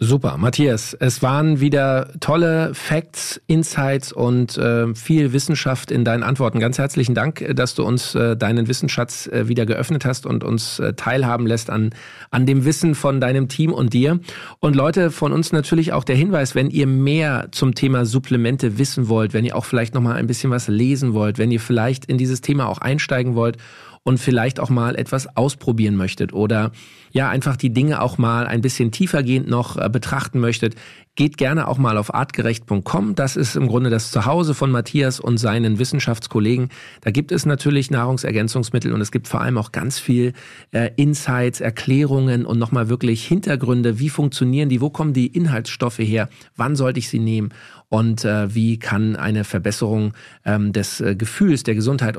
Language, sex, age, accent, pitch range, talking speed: German, male, 40-59, German, 115-140 Hz, 180 wpm